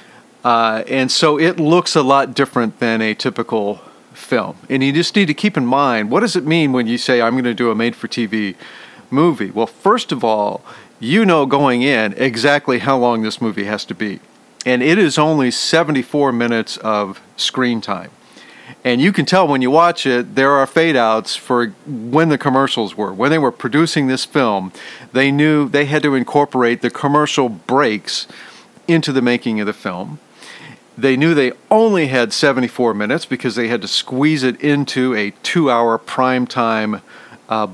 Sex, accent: male, American